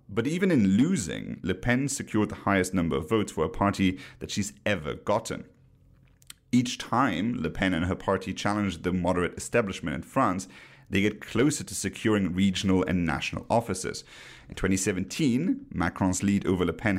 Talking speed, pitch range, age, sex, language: 170 wpm, 90-115 Hz, 30-49, male, English